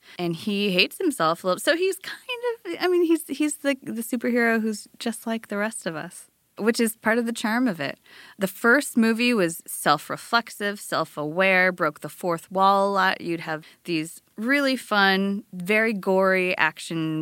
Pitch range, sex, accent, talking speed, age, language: 170-225 Hz, female, American, 180 wpm, 20-39, English